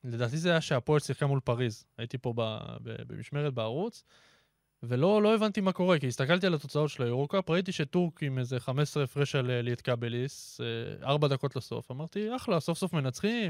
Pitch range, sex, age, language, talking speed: 125-155 Hz, male, 20-39, Hebrew, 180 wpm